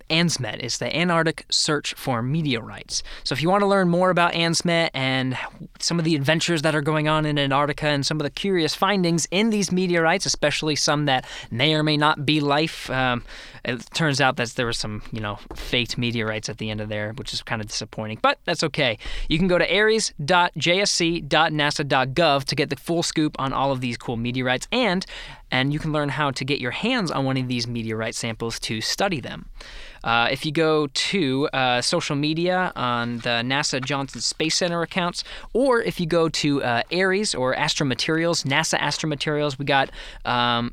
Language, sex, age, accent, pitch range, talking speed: English, male, 20-39, American, 125-160 Hz, 200 wpm